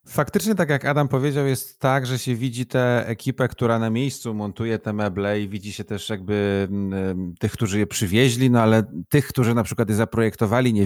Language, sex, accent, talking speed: Polish, male, native, 200 wpm